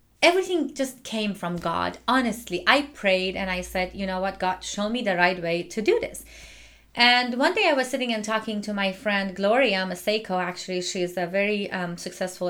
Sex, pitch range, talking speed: female, 190-250 Hz, 200 wpm